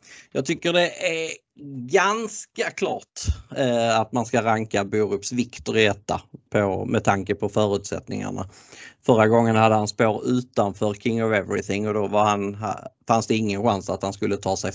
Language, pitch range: Swedish, 105-125 Hz